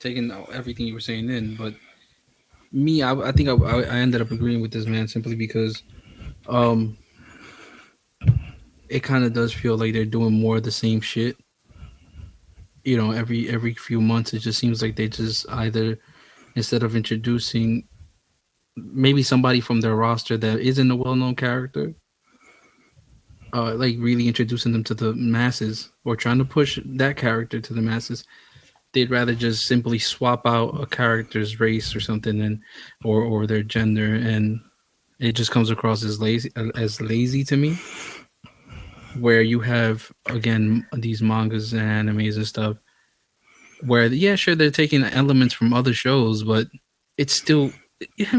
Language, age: English, 20-39